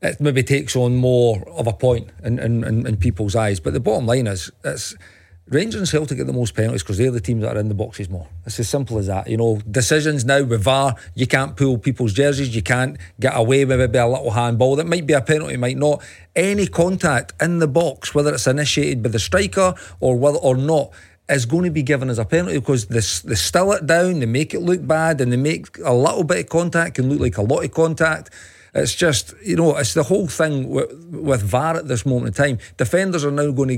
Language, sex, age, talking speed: English, male, 40-59, 250 wpm